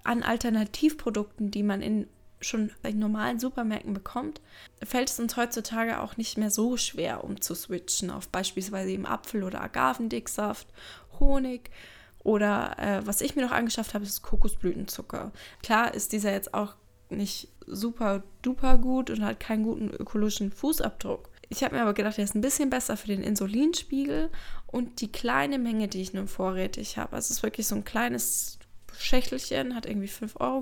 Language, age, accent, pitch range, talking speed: German, 20-39, German, 200-235 Hz, 165 wpm